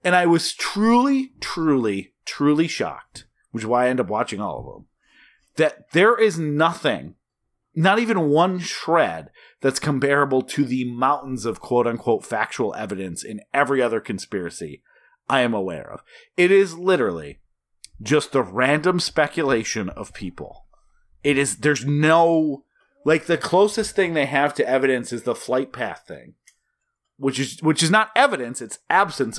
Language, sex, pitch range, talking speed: English, male, 125-185 Hz, 155 wpm